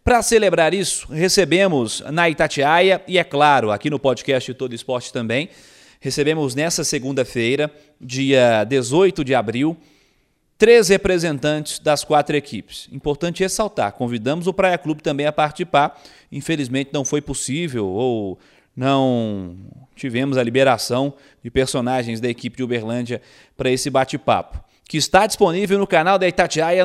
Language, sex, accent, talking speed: Portuguese, male, Brazilian, 135 wpm